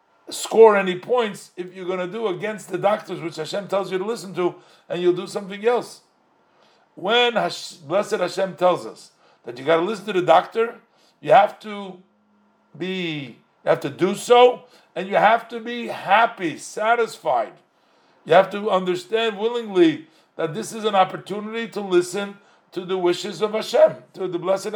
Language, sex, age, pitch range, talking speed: English, male, 50-69, 175-225 Hz, 175 wpm